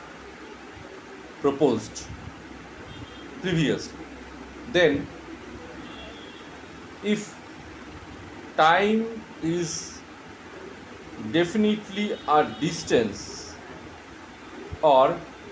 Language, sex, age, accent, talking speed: Bengali, male, 40-59, native, 40 wpm